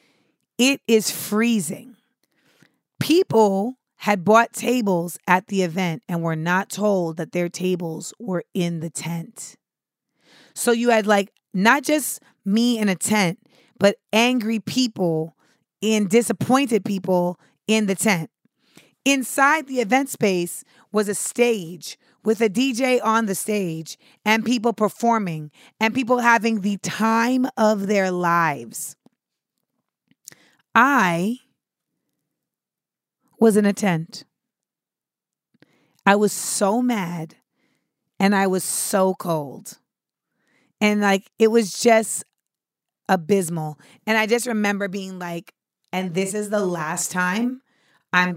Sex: female